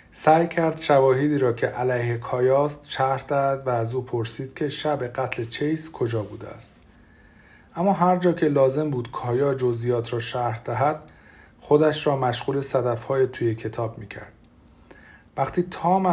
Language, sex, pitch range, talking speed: Persian, male, 120-150 Hz, 150 wpm